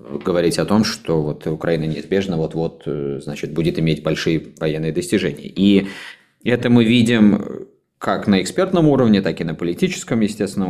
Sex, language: male, Russian